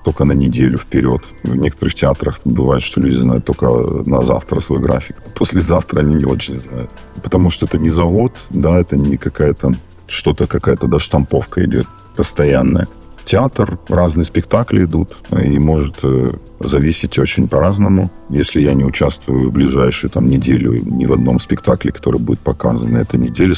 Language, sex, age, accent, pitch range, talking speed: Russian, male, 50-69, native, 65-90 Hz, 155 wpm